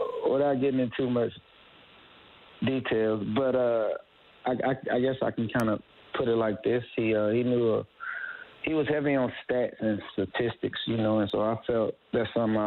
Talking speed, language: 190 wpm, English